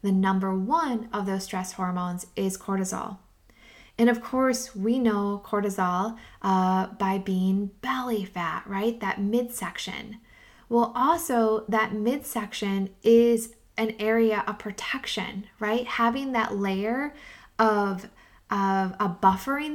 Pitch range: 190-230 Hz